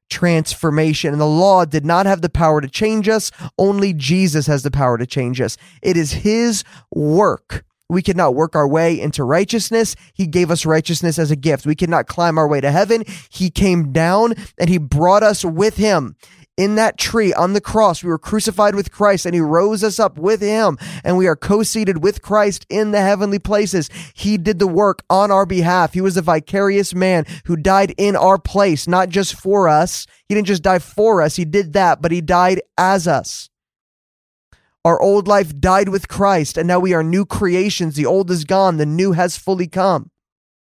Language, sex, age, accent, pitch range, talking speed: English, male, 20-39, American, 165-200 Hz, 205 wpm